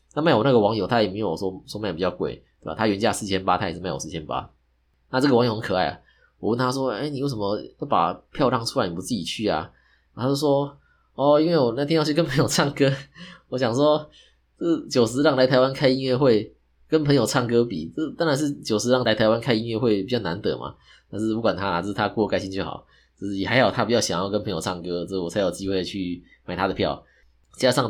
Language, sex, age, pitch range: Chinese, male, 20-39, 95-130 Hz